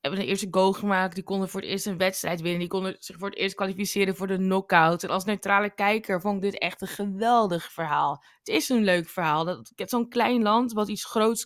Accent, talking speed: Dutch, 245 wpm